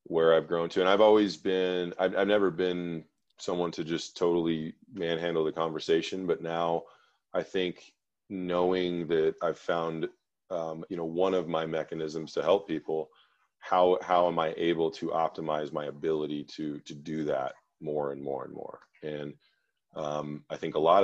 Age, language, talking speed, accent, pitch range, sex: 30-49, English, 175 wpm, American, 80-95 Hz, male